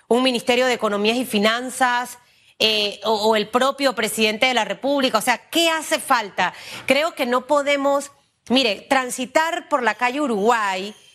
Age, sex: 30-49, female